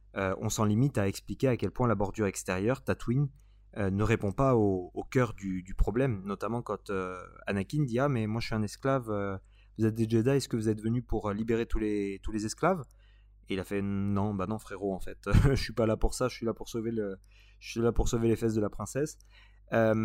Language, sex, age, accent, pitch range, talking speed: French, male, 30-49, French, 100-120 Hz, 250 wpm